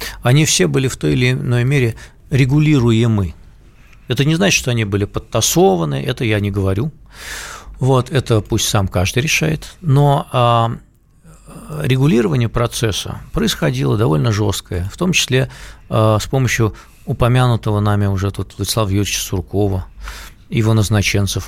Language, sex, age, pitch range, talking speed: Russian, male, 50-69, 105-150 Hz, 130 wpm